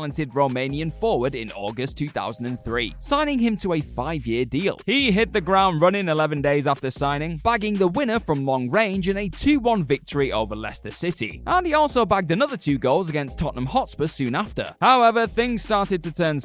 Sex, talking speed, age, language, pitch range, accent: male, 180 wpm, 20-39, English, 130-205 Hz, British